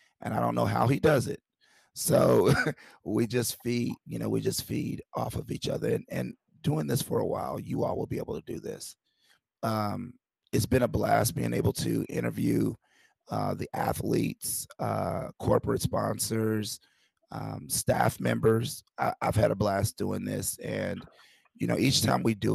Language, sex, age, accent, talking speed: English, male, 30-49, American, 180 wpm